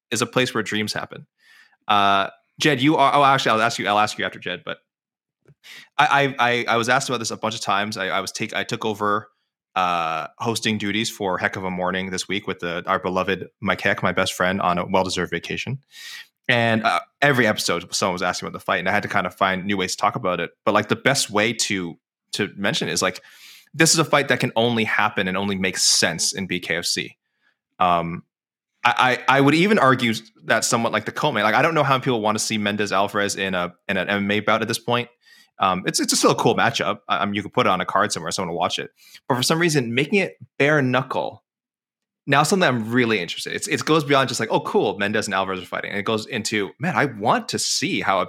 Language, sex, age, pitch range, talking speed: English, male, 20-39, 100-135 Hz, 250 wpm